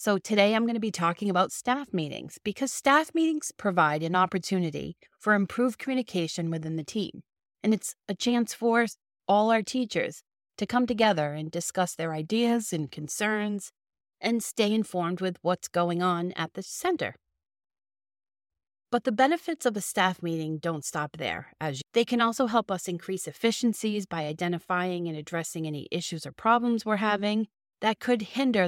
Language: English